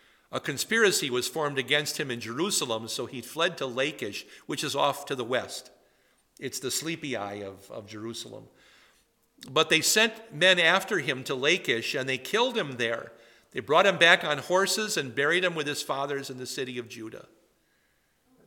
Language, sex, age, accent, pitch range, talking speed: English, male, 50-69, American, 125-175 Hz, 180 wpm